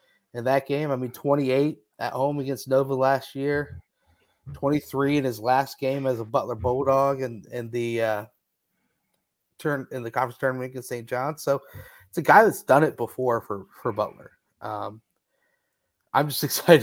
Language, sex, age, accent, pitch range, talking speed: English, male, 30-49, American, 110-140 Hz, 175 wpm